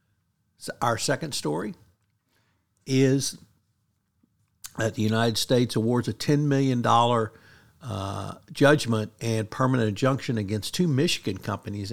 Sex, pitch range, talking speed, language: male, 105-120 Hz, 105 wpm, English